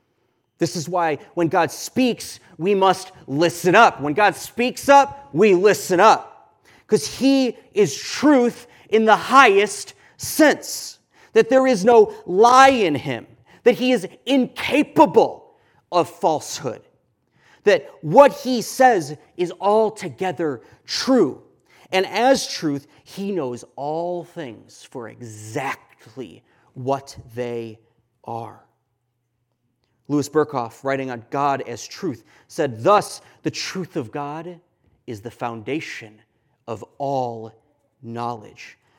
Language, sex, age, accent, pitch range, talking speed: English, male, 40-59, American, 120-180 Hz, 115 wpm